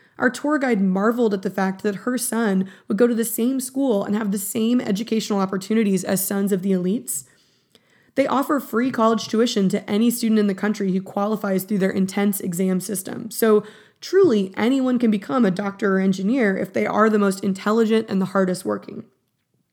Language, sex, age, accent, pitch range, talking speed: English, female, 20-39, American, 200-250 Hz, 195 wpm